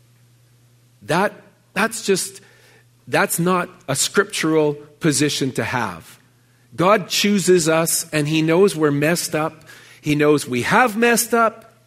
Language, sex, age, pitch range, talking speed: English, male, 40-59, 130-180 Hz, 125 wpm